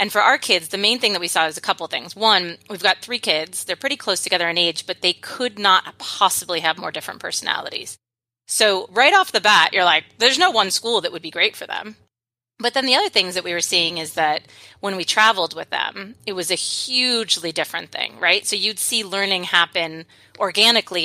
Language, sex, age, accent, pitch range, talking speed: English, female, 30-49, American, 170-210 Hz, 230 wpm